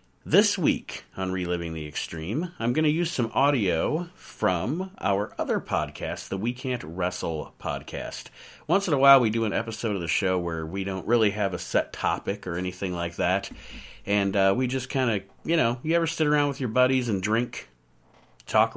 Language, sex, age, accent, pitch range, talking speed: English, male, 40-59, American, 95-130 Hz, 200 wpm